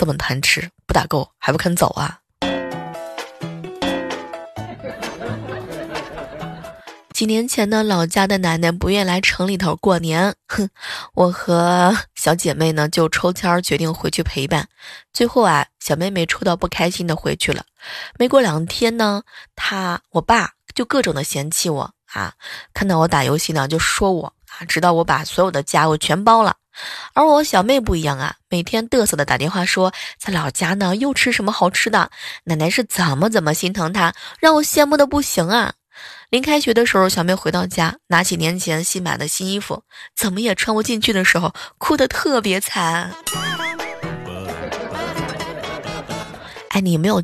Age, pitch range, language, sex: 20-39, 165-215 Hz, Chinese, female